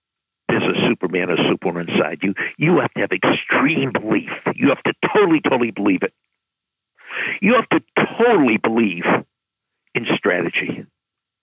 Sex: male